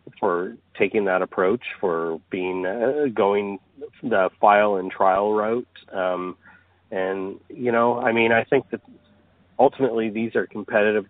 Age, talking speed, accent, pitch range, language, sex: 40-59, 140 wpm, American, 90-105 Hz, English, male